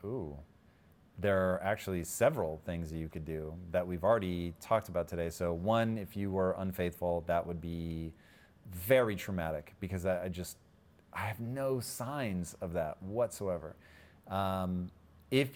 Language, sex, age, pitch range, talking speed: English, male, 30-49, 90-115 Hz, 150 wpm